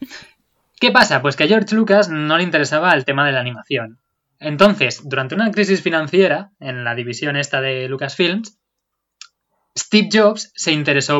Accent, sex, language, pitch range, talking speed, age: Spanish, male, Spanish, 140-190 Hz, 160 wpm, 20-39